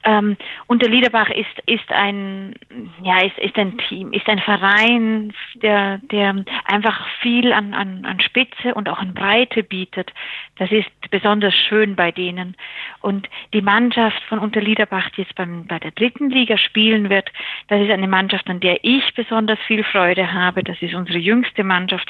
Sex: female